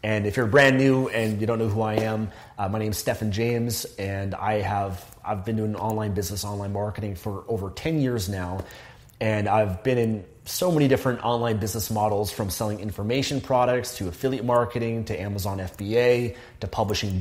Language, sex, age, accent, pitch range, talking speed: English, male, 30-49, American, 105-120 Hz, 190 wpm